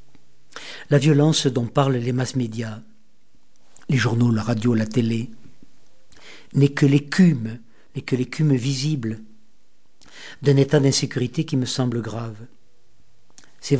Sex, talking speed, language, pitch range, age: male, 120 wpm, French, 120-145 Hz, 50-69